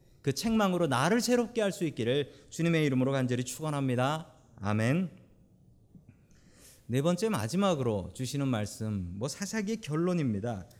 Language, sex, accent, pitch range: Korean, male, native, 120-180 Hz